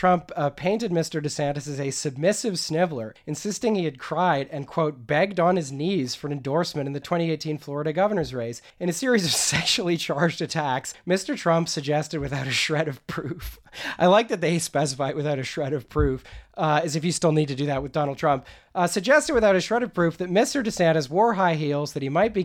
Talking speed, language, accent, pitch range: 220 wpm, English, American, 145-180 Hz